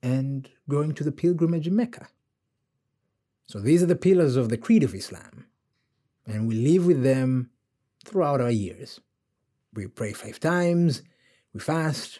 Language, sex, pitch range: English, male, 120-160 Hz